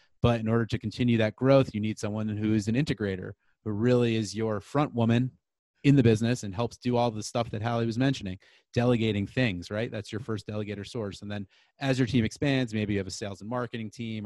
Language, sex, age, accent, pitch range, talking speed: English, male, 30-49, American, 105-125 Hz, 230 wpm